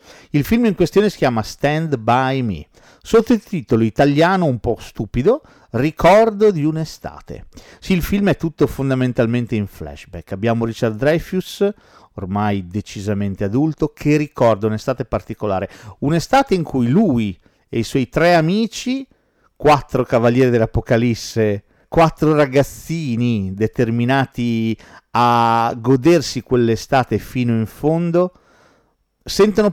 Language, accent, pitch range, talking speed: Italian, native, 110-155 Hz, 115 wpm